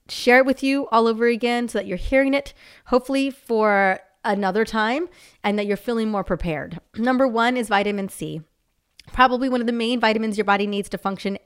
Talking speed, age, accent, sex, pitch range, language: 200 wpm, 30-49, American, female, 200-245 Hz, English